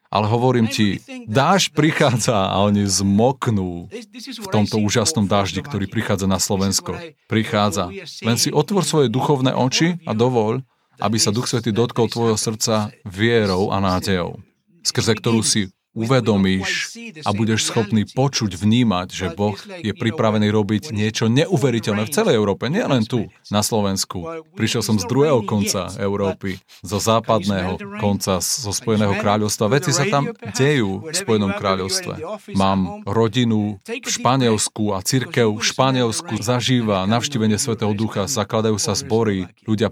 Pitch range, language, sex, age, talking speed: 100-125 Hz, Slovak, male, 40-59, 140 wpm